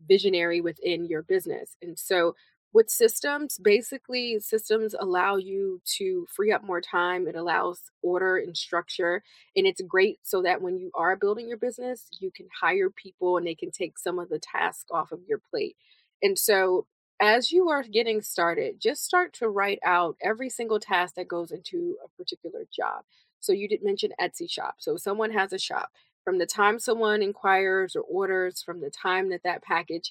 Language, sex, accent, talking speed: English, female, American, 185 wpm